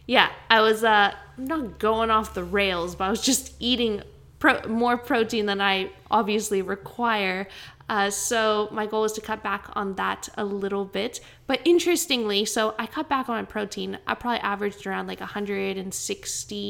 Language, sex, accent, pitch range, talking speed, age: English, female, American, 200-265 Hz, 175 wpm, 10-29